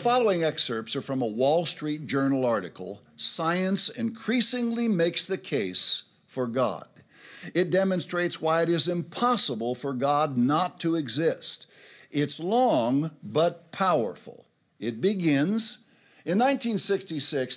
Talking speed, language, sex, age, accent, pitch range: 125 wpm, English, male, 60-79, American, 135-185 Hz